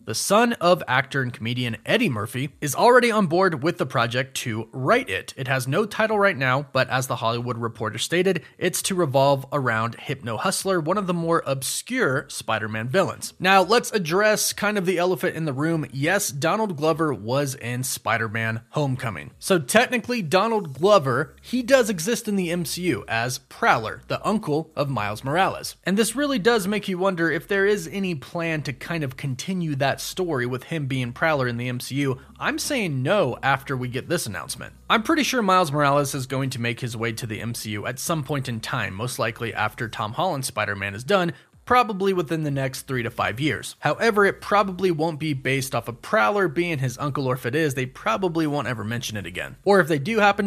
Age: 30-49